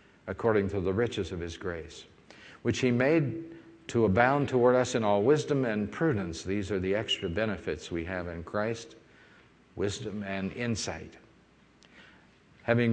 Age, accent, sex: 50-69, American, male